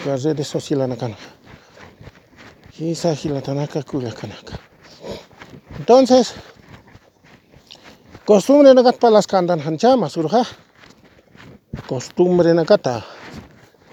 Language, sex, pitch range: English, male, 150-185 Hz